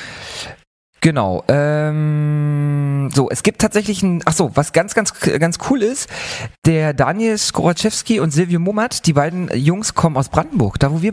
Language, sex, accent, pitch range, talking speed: English, male, German, 135-175 Hz, 155 wpm